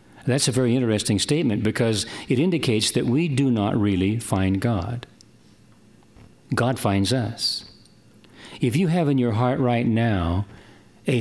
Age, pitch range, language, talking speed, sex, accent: 50-69, 105-135 Hz, English, 145 wpm, male, American